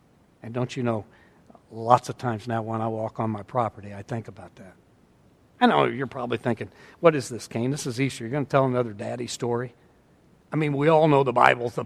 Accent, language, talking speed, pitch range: American, English, 230 wpm, 115-155 Hz